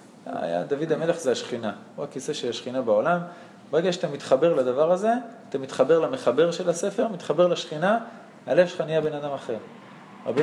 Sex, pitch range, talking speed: male, 150-215 Hz, 140 wpm